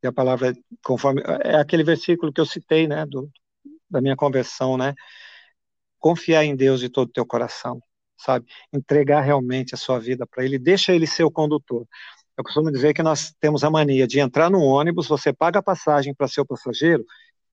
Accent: Brazilian